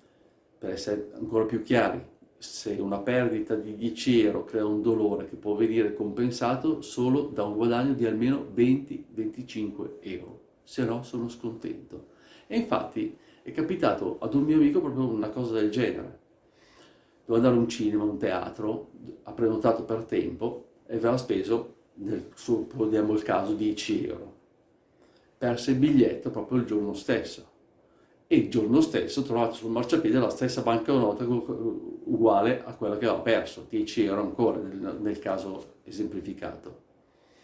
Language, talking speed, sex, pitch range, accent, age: Italian, 150 wpm, male, 110-160 Hz, native, 50-69